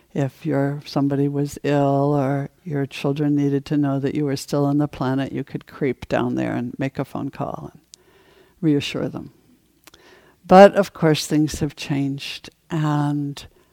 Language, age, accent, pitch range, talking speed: English, 60-79, American, 140-170 Hz, 160 wpm